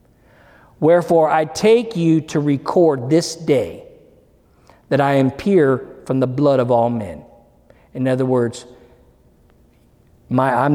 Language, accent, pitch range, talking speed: English, American, 125-170 Hz, 125 wpm